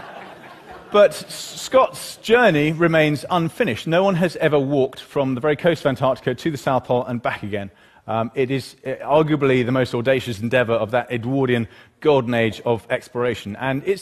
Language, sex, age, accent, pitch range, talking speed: English, male, 30-49, British, 125-160 Hz, 170 wpm